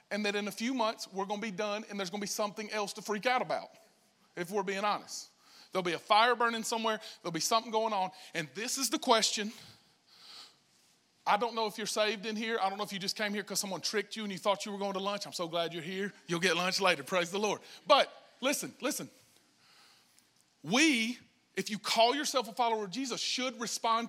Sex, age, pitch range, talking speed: male, 40-59, 195-225 Hz, 240 wpm